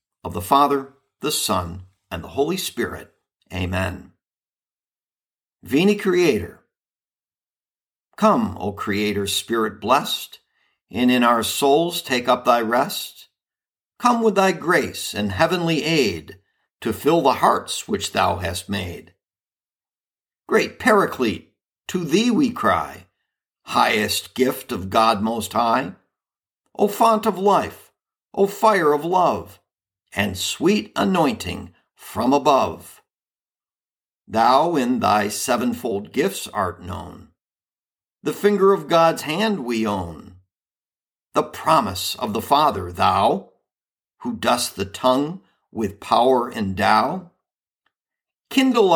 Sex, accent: male, American